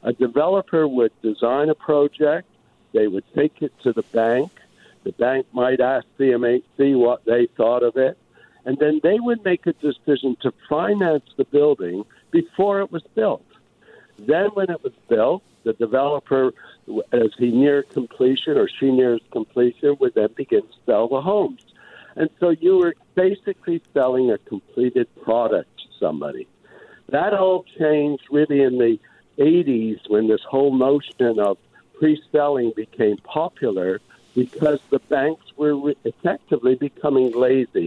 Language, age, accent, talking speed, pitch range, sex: English, 60-79, American, 145 wpm, 125-185 Hz, male